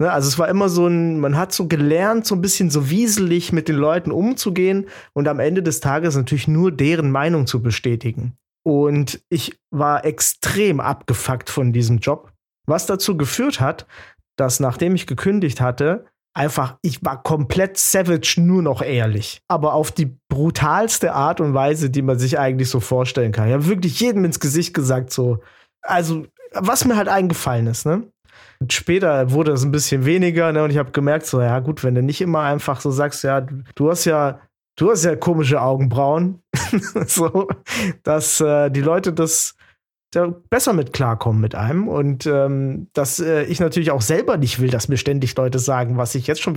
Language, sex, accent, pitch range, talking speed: German, male, German, 130-175 Hz, 185 wpm